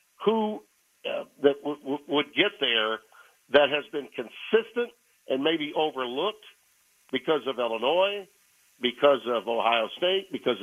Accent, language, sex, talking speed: American, English, male, 130 wpm